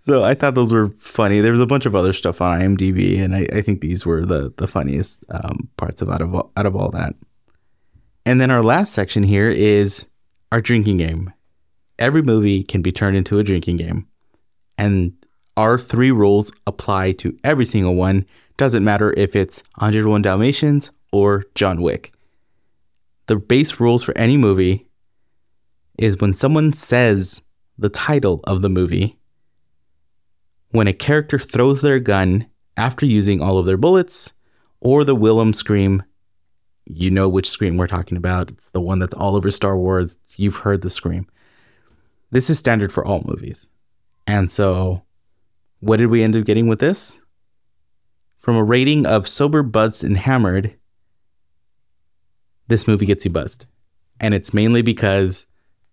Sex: male